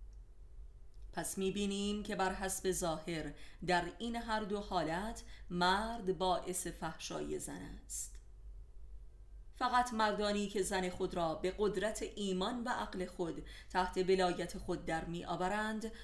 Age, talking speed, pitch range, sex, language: 30-49, 125 wpm, 175-210 Hz, female, Persian